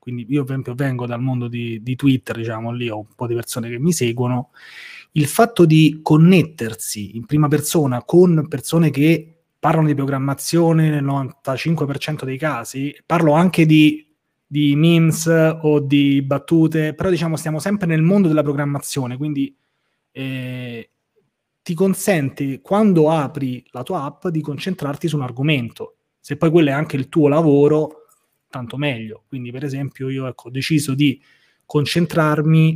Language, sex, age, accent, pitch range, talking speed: Italian, male, 30-49, native, 135-160 Hz, 160 wpm